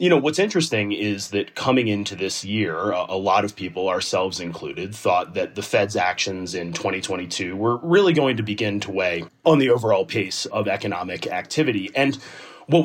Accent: American